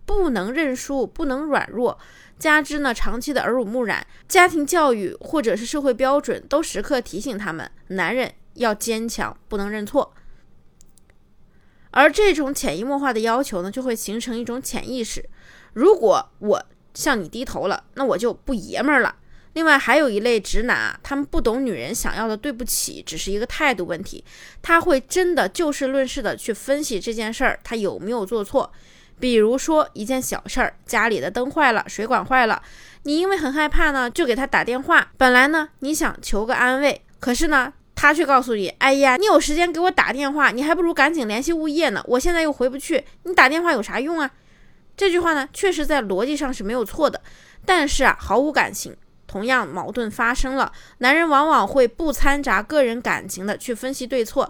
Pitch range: 235-300 Hz